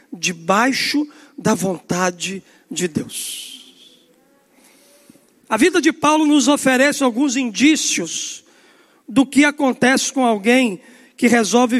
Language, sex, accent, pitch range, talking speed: Portuguese, male, Brazilian, 255-325 Hz, 100 wpm